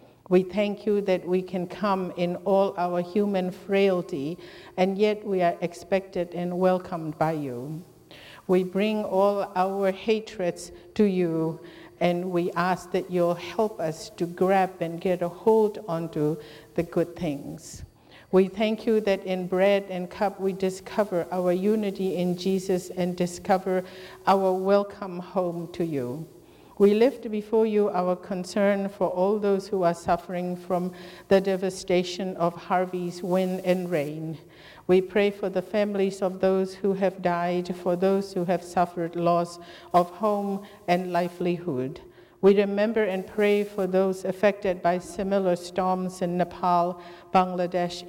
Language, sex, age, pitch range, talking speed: English, female, 50-69, 175-195 Hz, 150 wpm